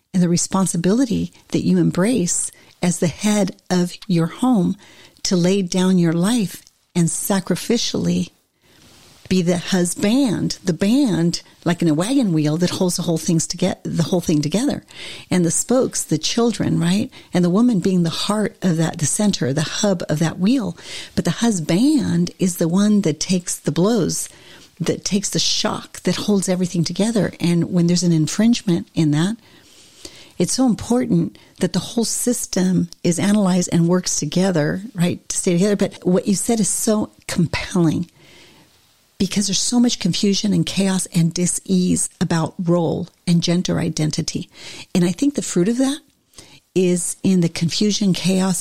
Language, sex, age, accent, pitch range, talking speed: English, female, 50-69, American, 170-200 Hz, 165 wpm